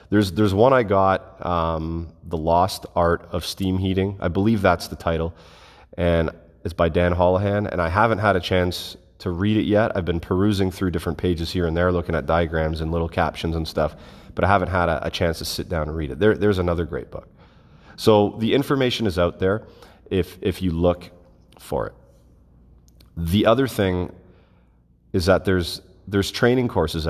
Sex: male